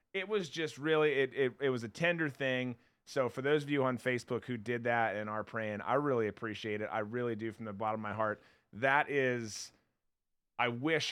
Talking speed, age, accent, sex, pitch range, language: 220 wpm, 30-49, American, male, 115-155 Hz, English